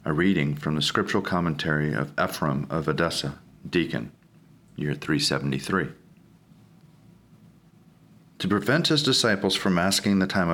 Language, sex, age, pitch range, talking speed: English, male, 40-59, 95-125 Hz, 120 wpm